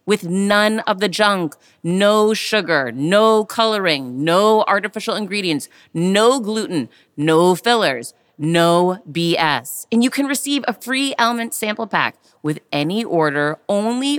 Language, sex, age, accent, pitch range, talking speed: English, female, 30-49, American, 185-235 Hz, 130 wpm